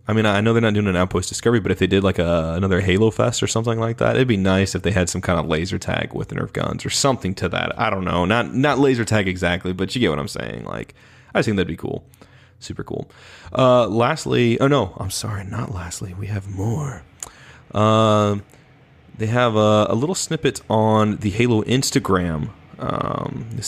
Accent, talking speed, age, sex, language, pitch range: American, 225 wpm, 30-49, male, English, 95-120 Hz